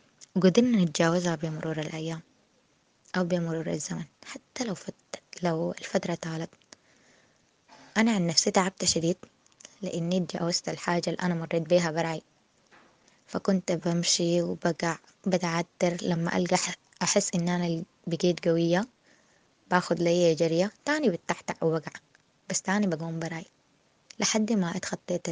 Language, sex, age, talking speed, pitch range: Arabic, female, 20-39, 120 wpm, 170-200 Hz